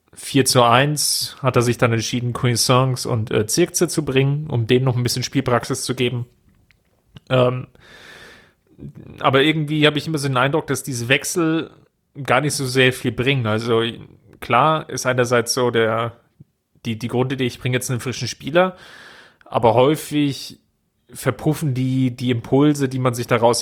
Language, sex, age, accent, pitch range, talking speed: German, male, 30-49, German, 120-135 Hz, 165 wpm